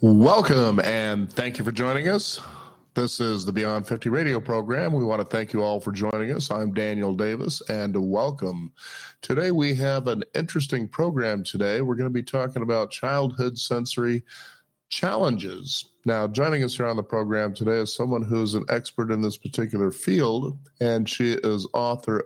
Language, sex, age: English, male, 50-69